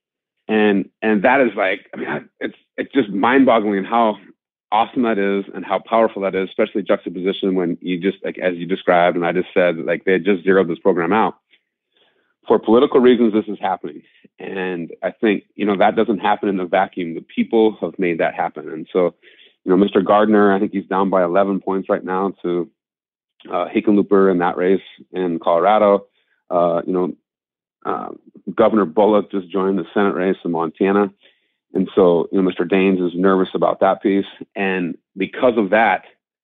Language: English